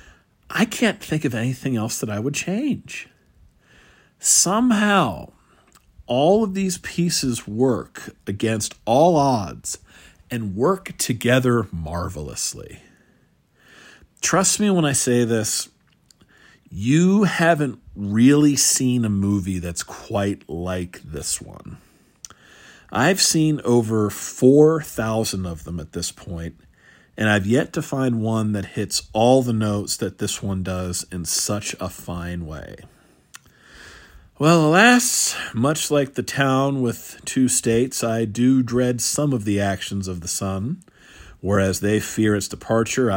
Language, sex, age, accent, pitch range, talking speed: English, male, 50-69, American, 100-135 Hz, 130 wpm